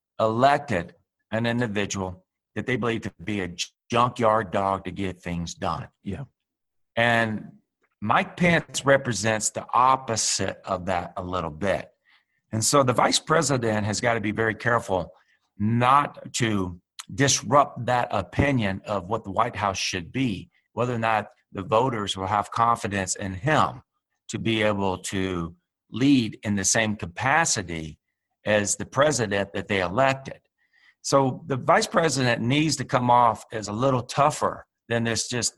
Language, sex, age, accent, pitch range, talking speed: English, male, 50-69, American, 95-125 Hz, 155 wpm